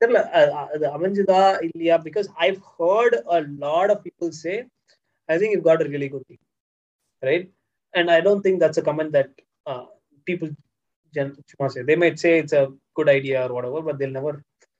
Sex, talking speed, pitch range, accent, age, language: male, 185 wpm, 135-170 Hz, native, 20-39, Tamil